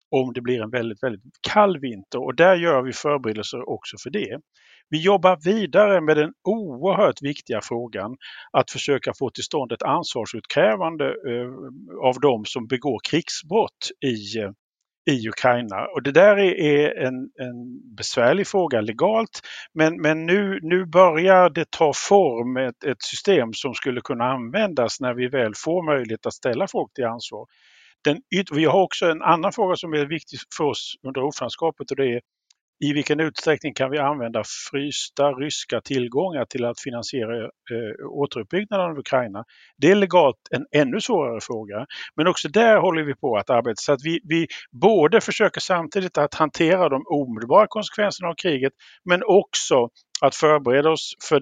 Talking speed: 165 wpm